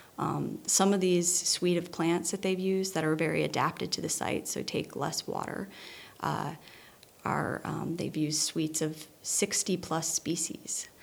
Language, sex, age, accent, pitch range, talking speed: English, female, 30-49, American, 160-180 Hz, 160 wpm